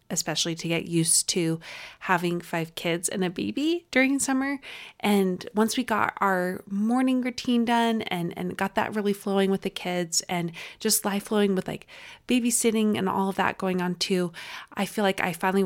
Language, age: English, 20-39